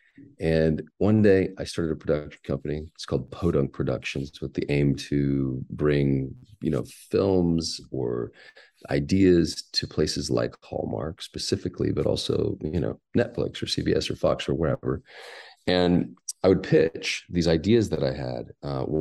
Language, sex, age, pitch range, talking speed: English, male, 30-49, 70-90 Hz, 150 wpm